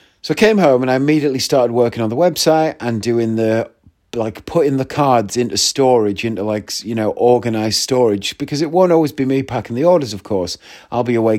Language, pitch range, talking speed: English, 110-140 Hz, 215 wpm